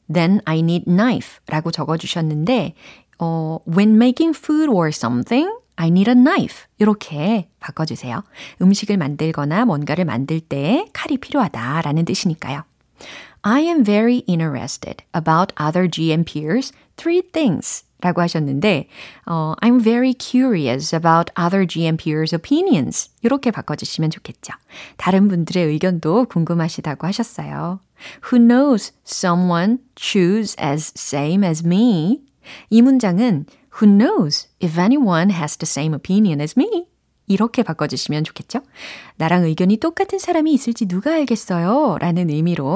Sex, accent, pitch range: female, native, 160-235 Hz